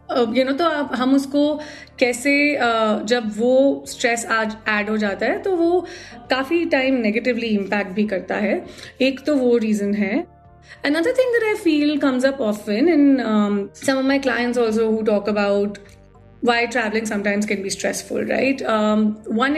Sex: female